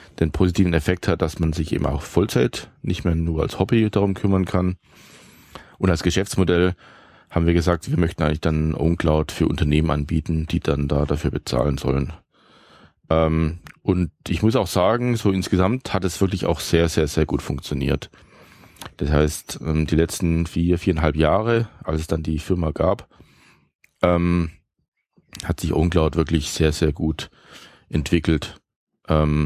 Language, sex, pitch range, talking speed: German, male, 75-90 Hz, 155 wpm